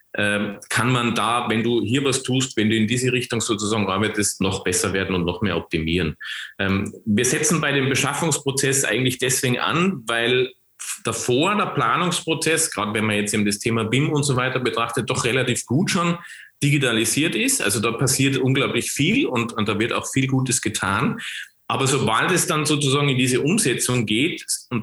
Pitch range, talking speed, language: 110-140 Hz, 180 wpm, German